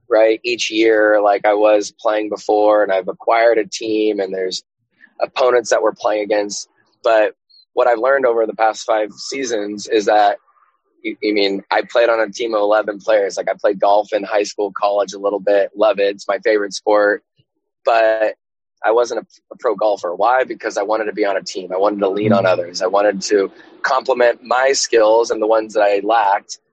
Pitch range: 100-130 Hz